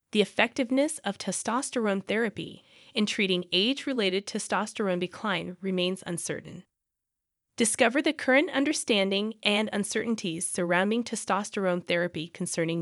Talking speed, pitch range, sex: 105 wpm, 185-260 Hz, female